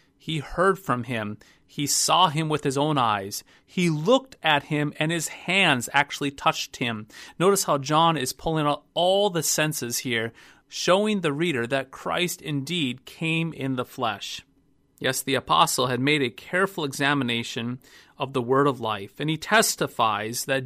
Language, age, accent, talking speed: English, 30-49, American, 170 wpm